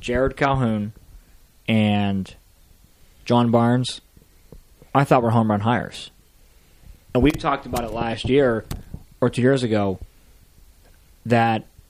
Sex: male